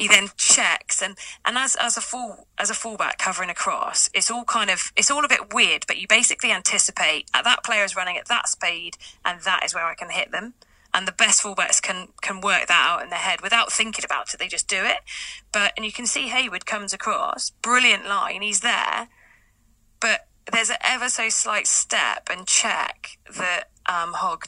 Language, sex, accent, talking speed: English, female, British, 215 wpm